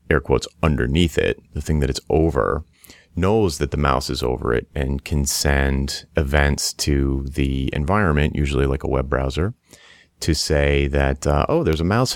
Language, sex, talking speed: English, male, 180 wpm